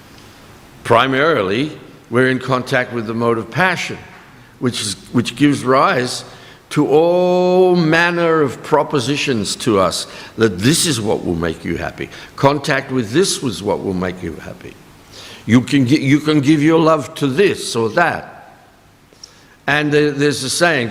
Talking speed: 145 wpm